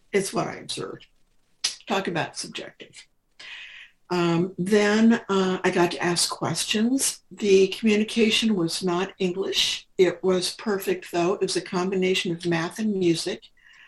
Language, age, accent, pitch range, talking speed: English, 60-79, American, 170-200 Hz, 140 wpm